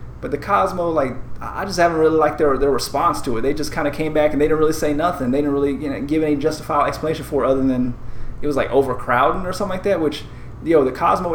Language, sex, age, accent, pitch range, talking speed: English, male, 20-39, American, 145-170 Hz, 275 wpm